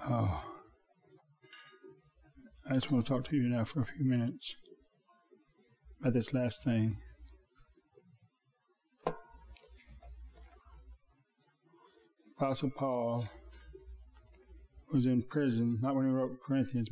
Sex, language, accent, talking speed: male, English, American, 95 wpm